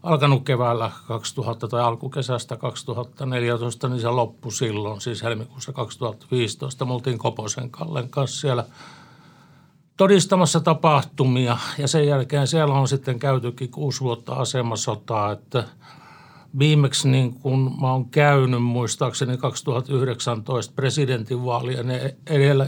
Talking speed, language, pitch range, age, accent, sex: 110 wpm, Finnish, 120-145 Hz, 60-79, native, male